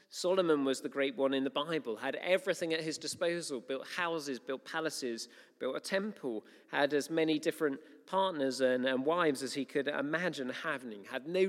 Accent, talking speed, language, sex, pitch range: British, 185 wpm, English, male, 140-200 Hz